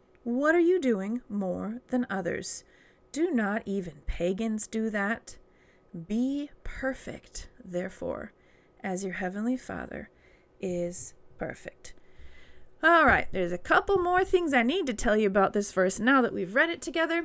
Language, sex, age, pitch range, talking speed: English, female, 30-49, 195-265 Hz, 150 wpm